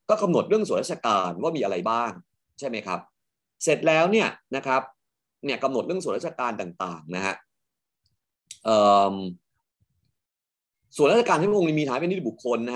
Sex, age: male, 30-49